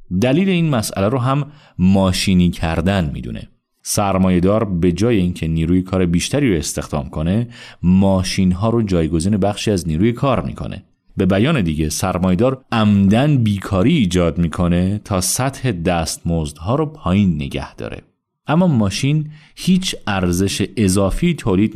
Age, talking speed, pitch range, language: 30-49, 140 wpm, 85-120 Hz, English